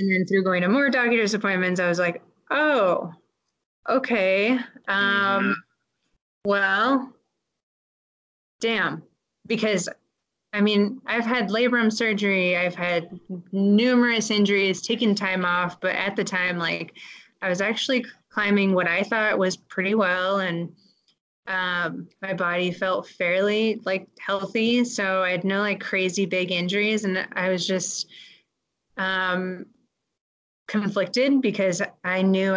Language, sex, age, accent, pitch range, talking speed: English, female, 20-39, American, 180-215 Hz, 130 wpm